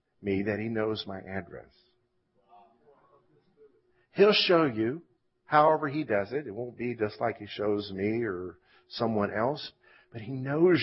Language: English